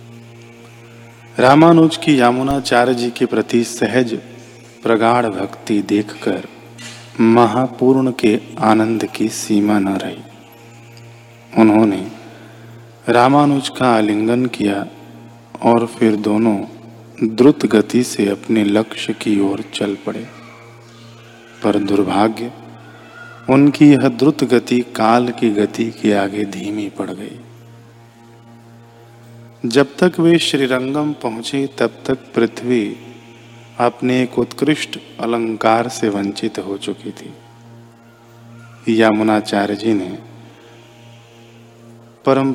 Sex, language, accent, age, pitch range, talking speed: male, Hindi, native, 40-59, 115-120 Hz, 95 wpm